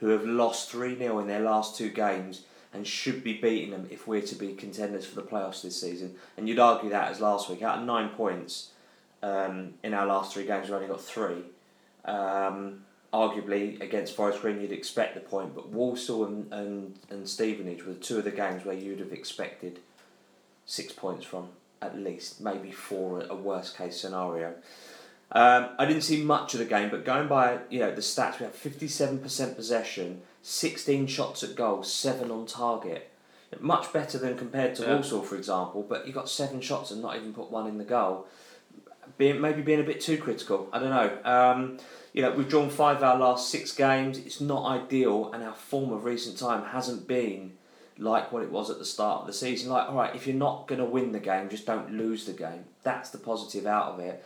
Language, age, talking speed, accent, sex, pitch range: English, 30-49, 210 wpm, British, male, 100-125 Hz